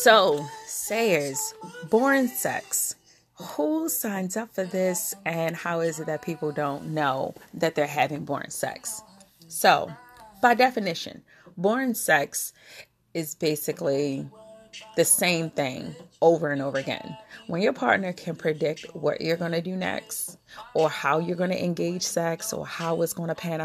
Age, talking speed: 30-49, 150 wpm